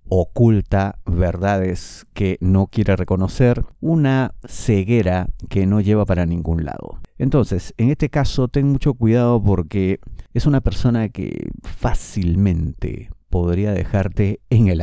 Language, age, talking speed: Spanish, 50-69, 125 wpm